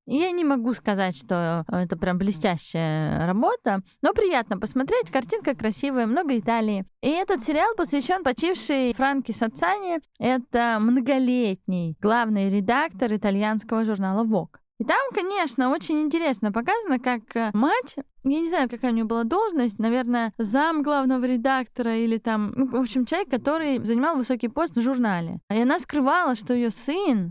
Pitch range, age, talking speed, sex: 220-295 Hz, 20-39, 145 wpm, female